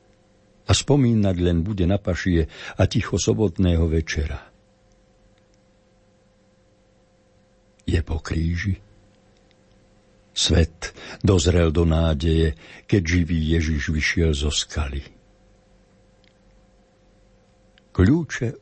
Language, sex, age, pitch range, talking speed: Slovak, male, 60-79, 85-105 Hz, 75 wpm